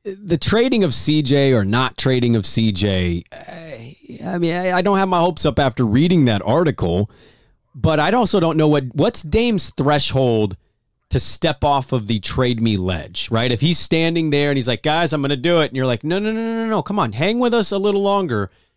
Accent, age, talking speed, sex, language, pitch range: American, 30-49, 220 wpm, male, English, 115-155 Hz